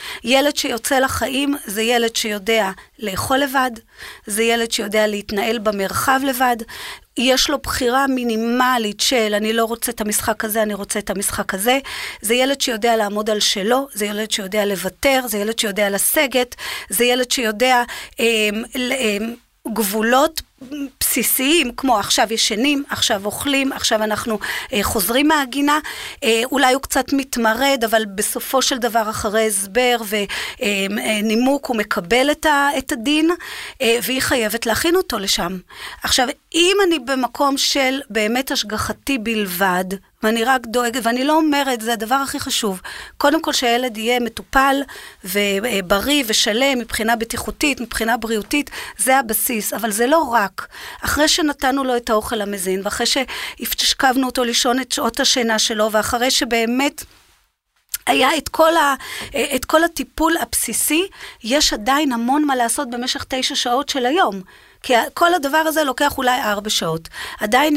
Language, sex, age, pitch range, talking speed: Hebrew, female, 30-49, 220-275 Hz, 140 wpm